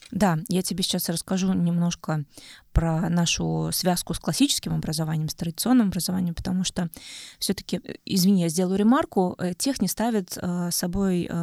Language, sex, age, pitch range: Russian, female, 20-39, 170-210 Hz